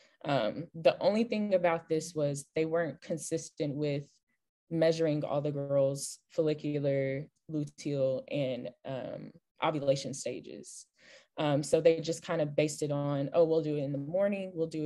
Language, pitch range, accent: English, 145-170 Hz, American